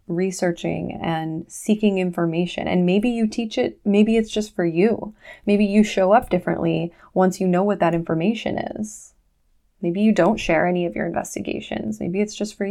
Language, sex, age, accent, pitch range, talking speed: English, female, 20-39, American, 160-195 Hz, 180 wpm